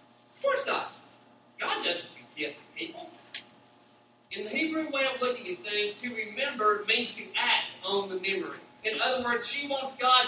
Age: 40-59